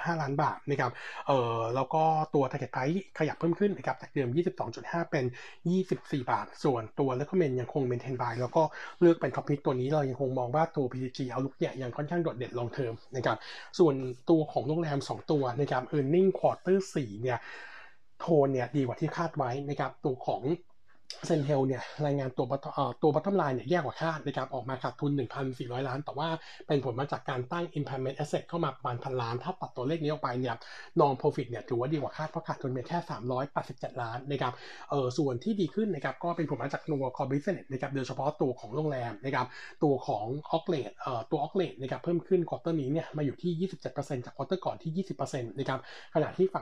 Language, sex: Thai, male